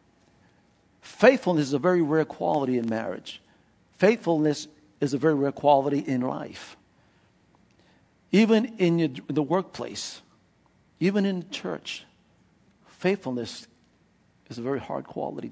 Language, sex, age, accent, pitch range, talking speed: English, male, 60-79, American, 150-205 Hz, 115 wpm